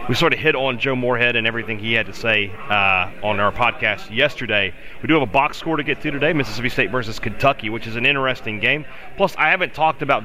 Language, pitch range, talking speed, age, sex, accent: English, 115-155 Hz, 245 wpm, 30-49, male, American